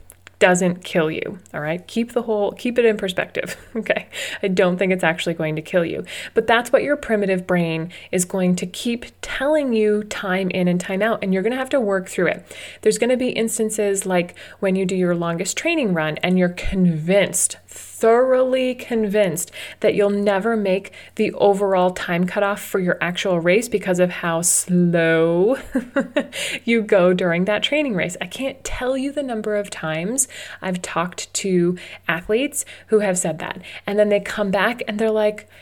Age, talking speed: 30-49, 190 wpm